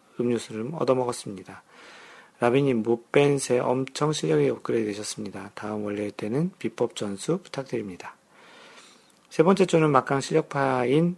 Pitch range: 110-150 Hz